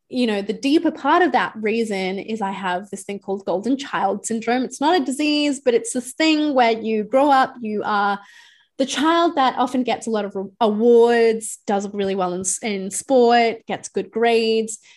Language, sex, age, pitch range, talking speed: English, female, 20-39, 200-250 Hz, 195 wpm